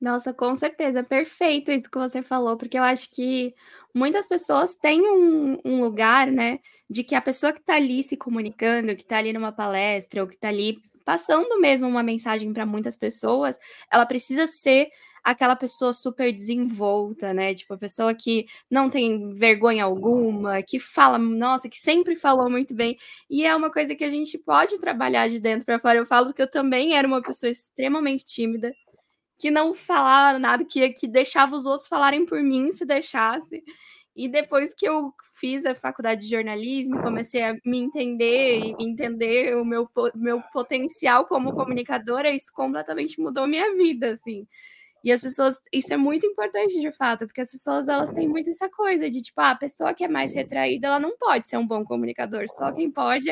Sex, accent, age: female, Brazilian, 10-29